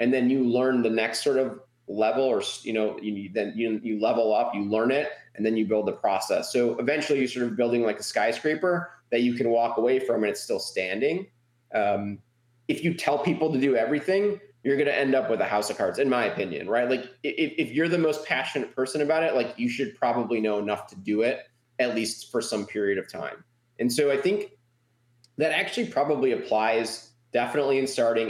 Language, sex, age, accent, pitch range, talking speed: English, male, 20-39, American, 110-130 Hz, 225 wpm